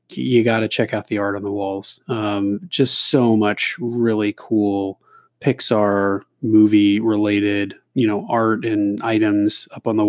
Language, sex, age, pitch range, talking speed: English, male, 30-49, 105-120 Hz, 160 wpm